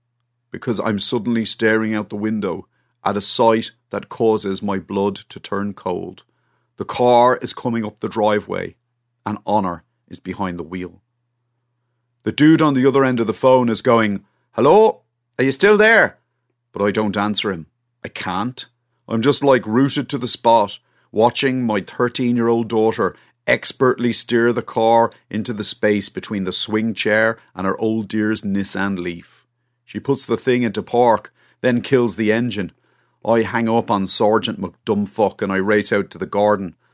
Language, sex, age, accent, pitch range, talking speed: English, male, 40-59, Irish, 105-125 Hz, 170 wpm